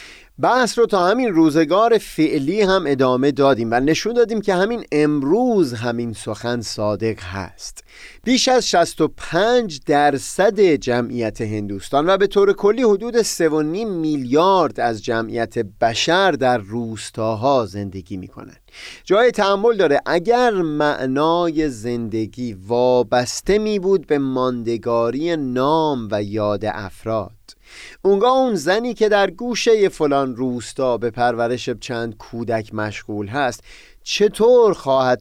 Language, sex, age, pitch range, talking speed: Persian, male, 30-49, 115-165 Hz, 125 wpm